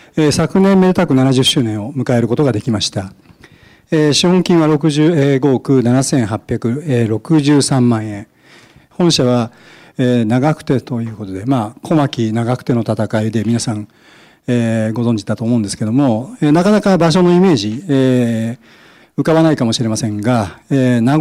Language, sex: Japanese, male